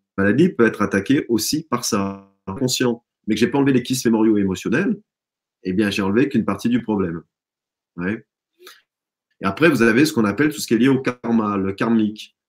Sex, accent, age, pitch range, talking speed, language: male, French, 30-49, 95-125 Hz, 210 wpm, French